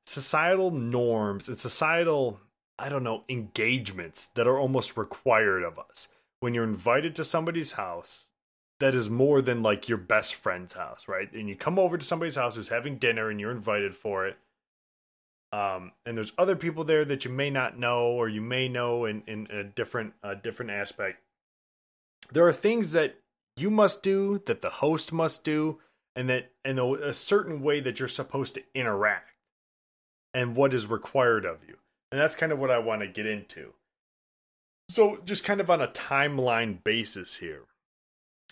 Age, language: 20-39, English